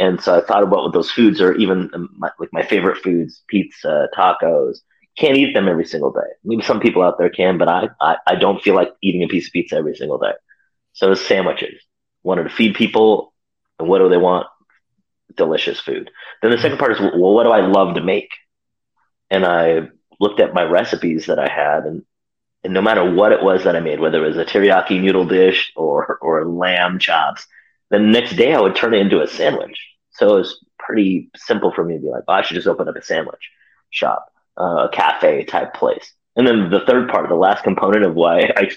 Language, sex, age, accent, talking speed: English, male, 30-49, American, 225 wpm